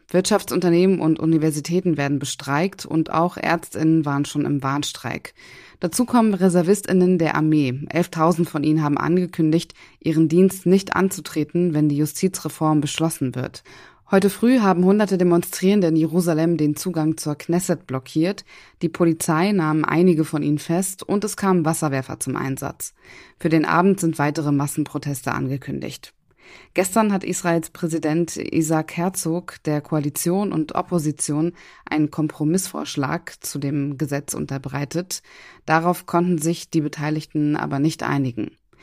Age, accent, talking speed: 20-39, German, 135 wpm